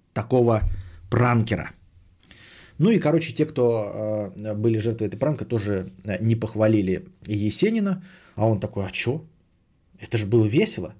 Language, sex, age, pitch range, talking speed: Bulgarian, male, 30-49, 105-140 Hz, 130 wpm